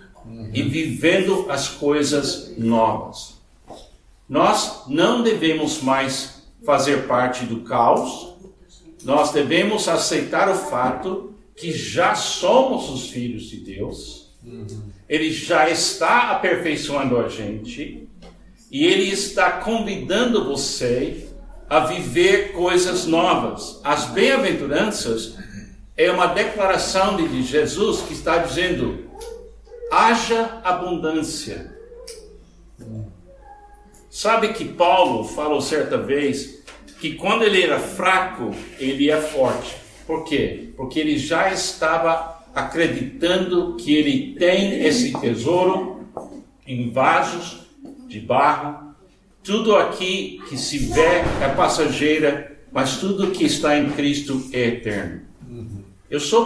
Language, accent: Portuguese, Brazilian